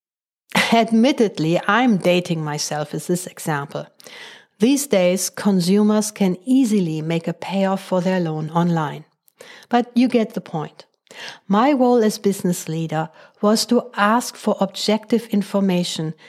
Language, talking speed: English, 130 wpm